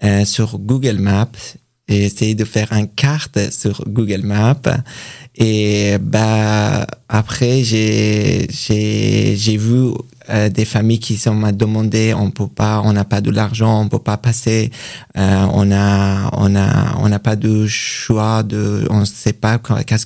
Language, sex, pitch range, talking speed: French, male, 105-120 Hz, 160 wpm